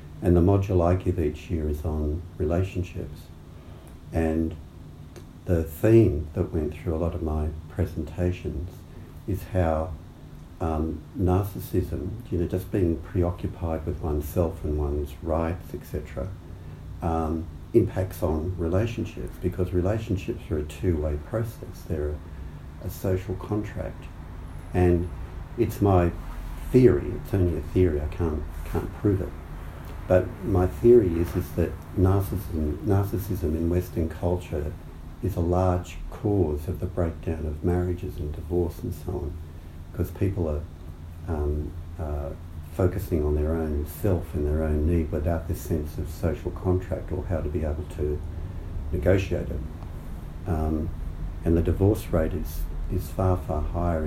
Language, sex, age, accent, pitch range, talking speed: English, male, 60-79, Australian, 80-90 Hz, 140 wpm